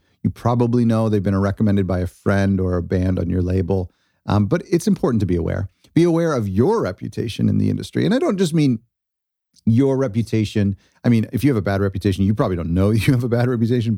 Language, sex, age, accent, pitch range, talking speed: English, male, 40-59, American, 100-125 Hz, 230 wpm